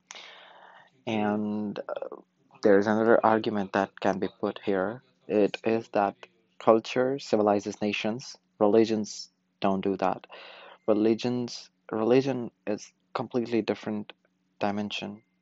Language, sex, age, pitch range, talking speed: Urdu, male, 20-39, 95-110 Hz, 105 wpm